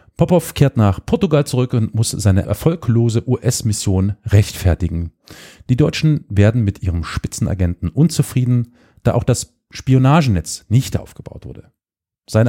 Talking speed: 125 wpm